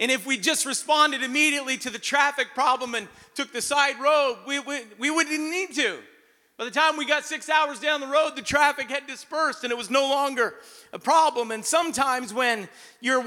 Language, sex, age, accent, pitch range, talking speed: English, male, 40-59, American, 245-290 Hz, 205 wpm